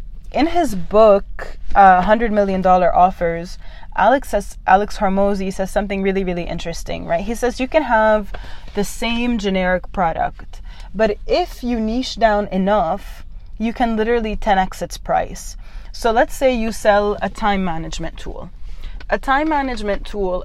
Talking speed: 155 wpm